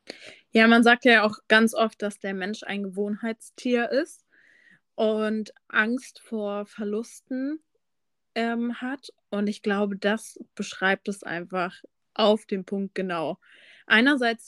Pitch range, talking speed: 205-240 Hz, 130 wpm